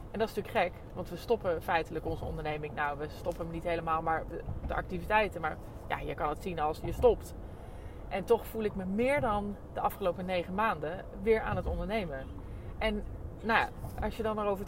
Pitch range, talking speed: 165-225 Hz, 210 wpm